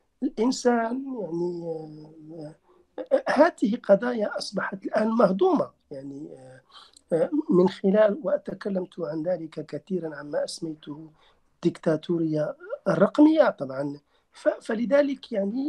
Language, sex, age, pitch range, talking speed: Arabic, male, 50-69, 150-245 Hz, 80 wpm